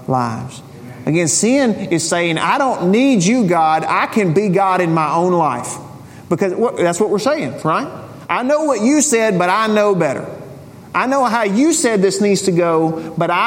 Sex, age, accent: male, 40-59, American